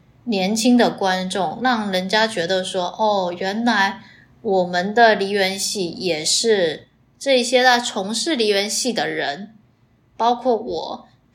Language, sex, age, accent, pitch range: Chinese, female, 20-39, native, 185-240 Hz